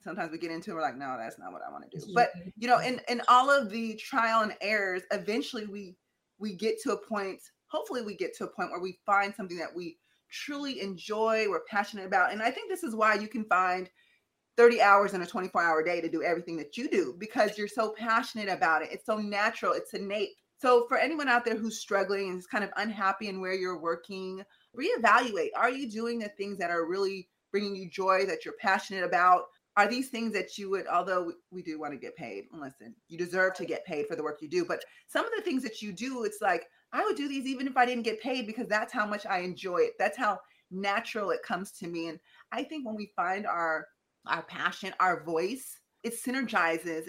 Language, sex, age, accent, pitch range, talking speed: English, female, 20-39, American, 180-235 Hz, 235 wpm